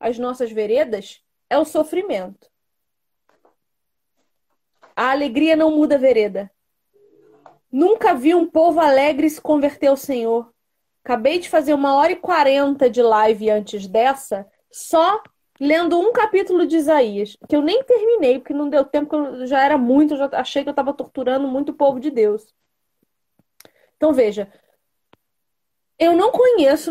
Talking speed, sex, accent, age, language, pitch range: 145 wpm, female, Brazilian, 20-39, Portuguese, 260-345 Hz